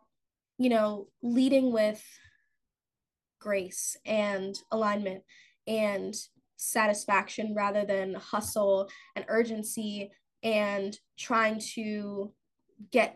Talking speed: 80 wpm